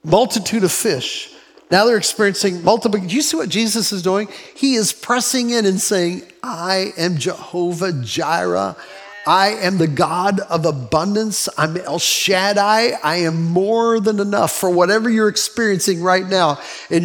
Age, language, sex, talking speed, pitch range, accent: 50-69, English, male, 160 wpm, 195-240 Hz, American